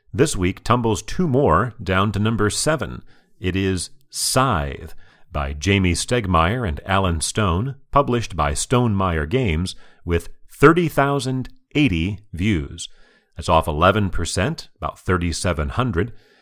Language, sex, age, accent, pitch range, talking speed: English, male, 40-59, American, 85-120 Hz, 110 wpm